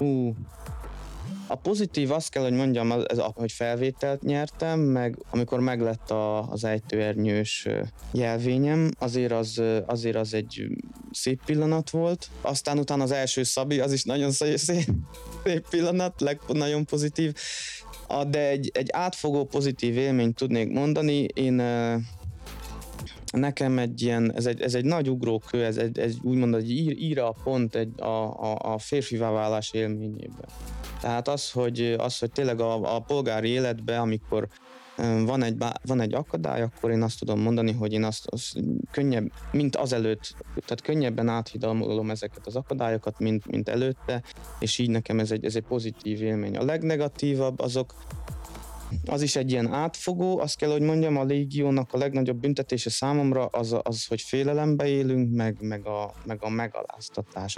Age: 20-39